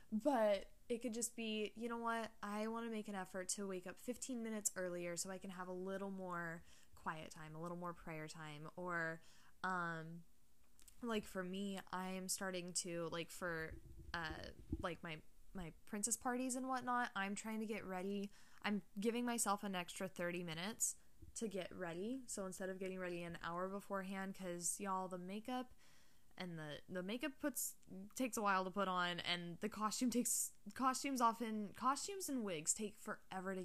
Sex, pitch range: female, 175-215 Hz